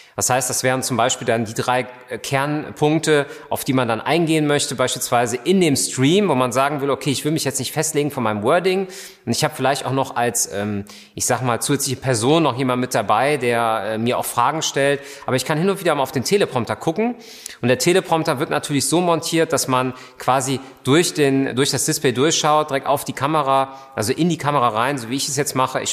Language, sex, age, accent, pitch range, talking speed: German, male, 30-49, German, 120-150 Hz, 225 wpm